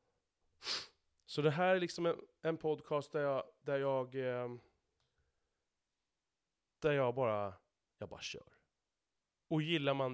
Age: 30-49